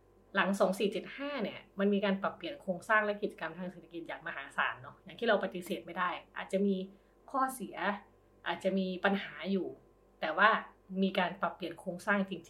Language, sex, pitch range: Thai, female, 185-215 Hz